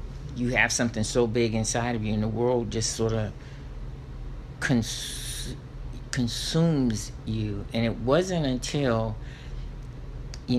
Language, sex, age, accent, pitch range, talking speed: English, male, 50-69, American, 110-130 Hz, 120 wpm